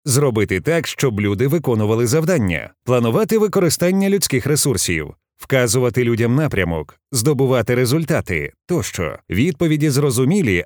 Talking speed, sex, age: 100 wpm, male, 30-49